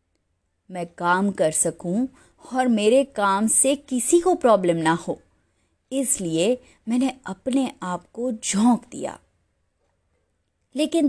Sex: female